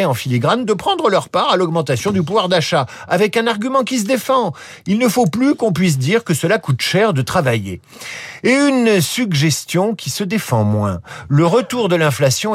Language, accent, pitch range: French, French, 120-175 Hz